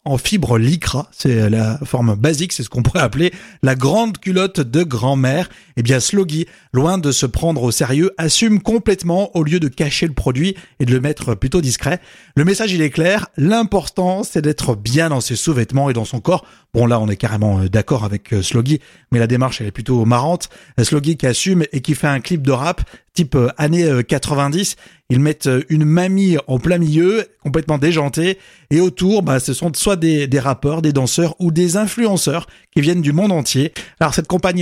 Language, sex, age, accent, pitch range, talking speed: French, male, 30-49, French, 130-185 Hz, 200 wpm